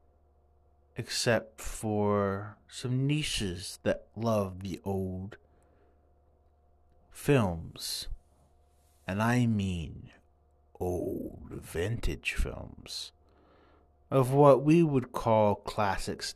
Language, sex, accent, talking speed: English, male, American, 75 wpm